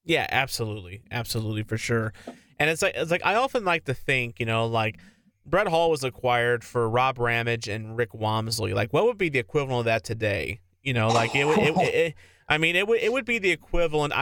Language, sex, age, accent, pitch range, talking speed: English, male, 30-49, American, 110-135 Hz, 230 wpm